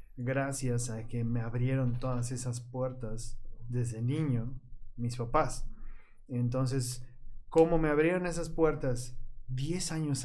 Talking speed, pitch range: 115 wpm, 120-140 Hz